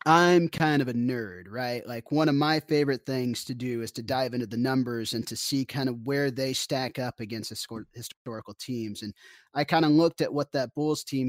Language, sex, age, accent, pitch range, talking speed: English, male, 30-49, American, 115-145 Hz, 235 wpm